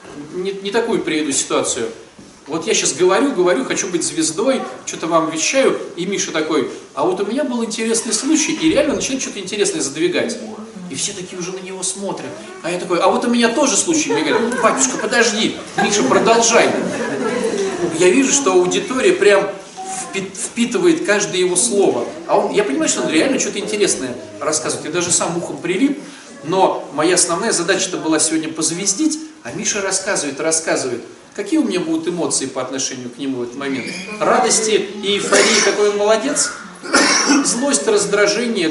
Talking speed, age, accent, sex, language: 170 wpm, 30-49, native, male, Russian